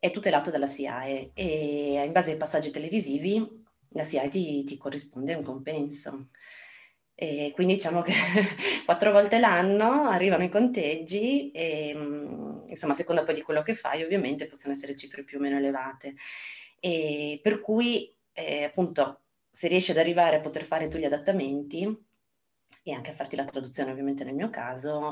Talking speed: 165 wpm